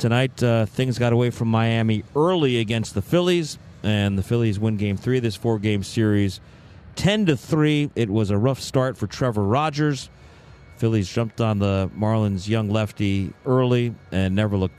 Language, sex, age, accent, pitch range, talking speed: English, male, 40-59, American, 105-145 Hz, 180 wpm